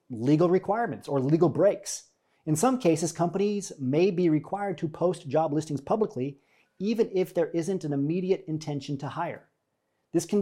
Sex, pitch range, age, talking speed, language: male, 140-180 Hz, 40-59, 160 wpm, English